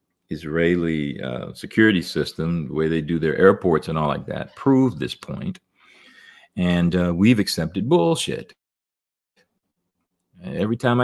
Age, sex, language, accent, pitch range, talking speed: 50-69, male, English, American, 80-105 Hz, 130 wpm